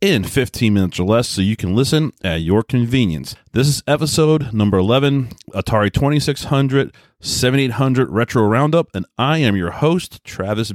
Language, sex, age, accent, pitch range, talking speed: English, male, 30-49, American, 95-130 Hz, 150 wpm